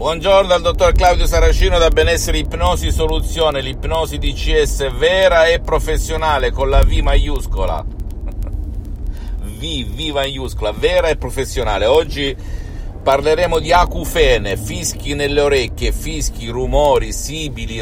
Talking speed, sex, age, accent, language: 115 wpm, male, 50-69, native, Italian